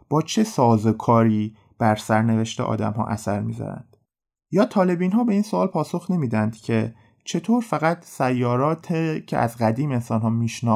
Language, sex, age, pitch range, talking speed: Persian, male, 30-49, 110-140 Hz, 140 wpm